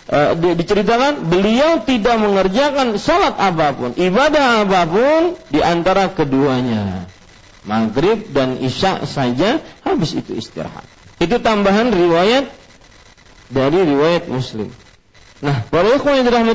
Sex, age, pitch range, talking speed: male, 40-59, 150-235 Hz, 90 wpm